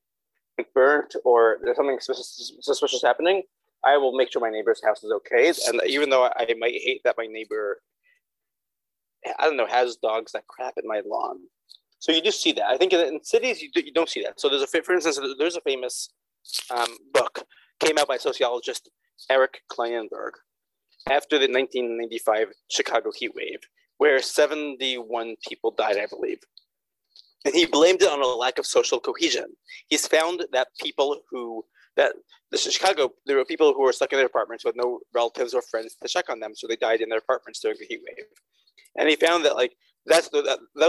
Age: 30-49